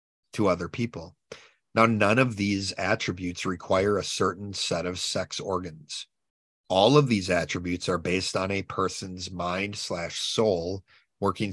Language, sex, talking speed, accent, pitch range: English, male, 140 wpm, American, 90-110 Hz